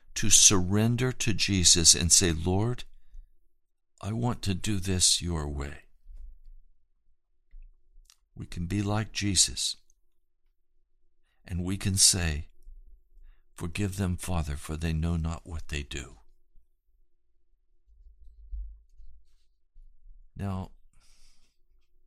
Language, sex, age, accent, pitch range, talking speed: English, male, 60-79, American, 80-115 Hz, 90 wpm